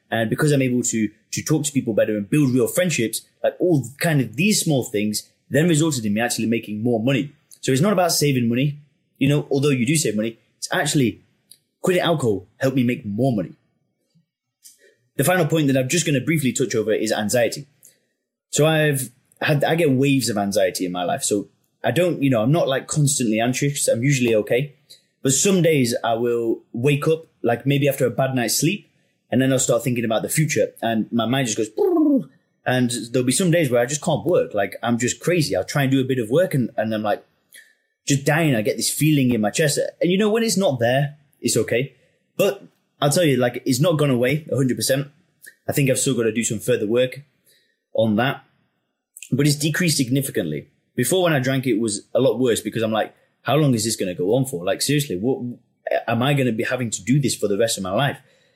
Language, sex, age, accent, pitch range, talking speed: English, male, 20-39, British, 120-155 Hz, 230 wpm